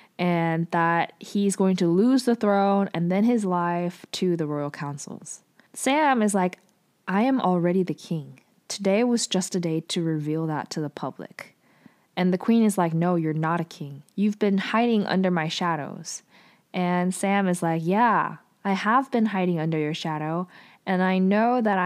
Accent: American